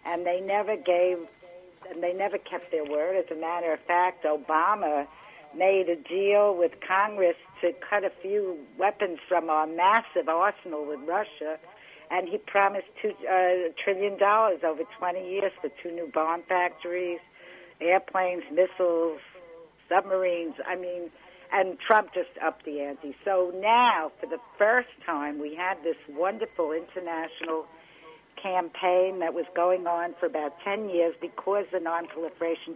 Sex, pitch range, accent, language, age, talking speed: female, 165-185 Hz, American, English, 60-79, 145 wpm